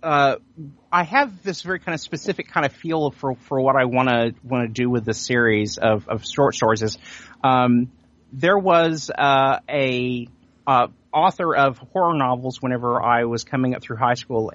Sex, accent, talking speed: male, American, 190 wpm